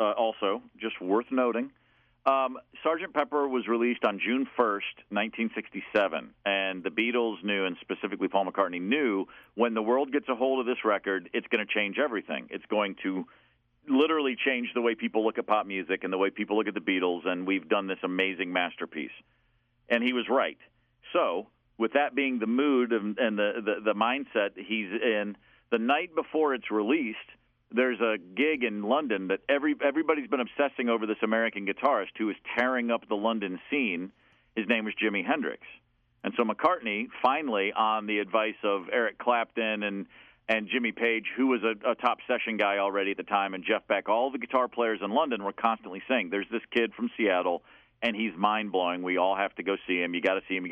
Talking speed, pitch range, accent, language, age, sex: 200 wpm, 100-125 Hz, American, English, 50-69, male